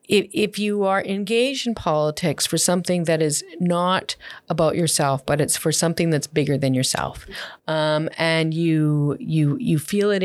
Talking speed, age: 170 wpm, 40-59